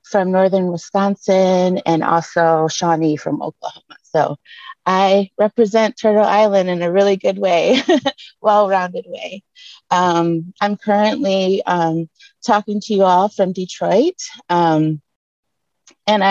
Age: 30-49